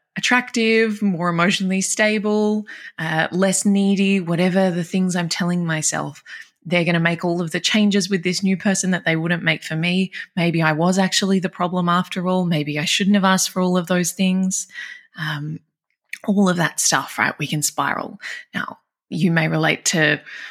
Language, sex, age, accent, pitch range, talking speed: English, female, 20-39, Australian, 155-200 Hz, 185 wpm